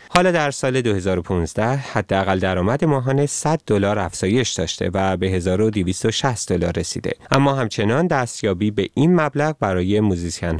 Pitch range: 95-130 Hz